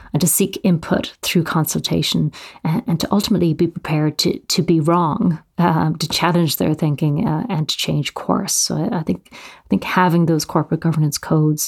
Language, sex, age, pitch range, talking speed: English, female, 30-49, 155-175 Hz, 180 wpm